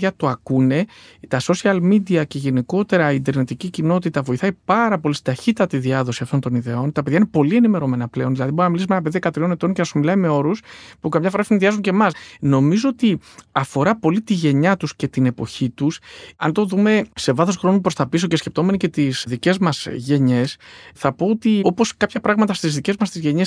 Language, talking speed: Greek, 215 wpm